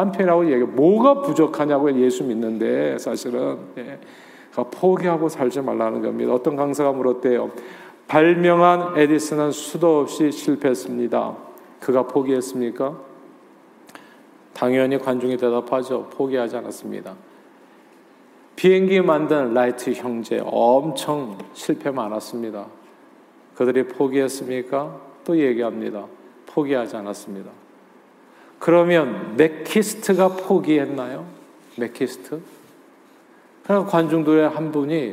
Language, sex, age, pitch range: Korean, male, 40-59, 125-160 Hz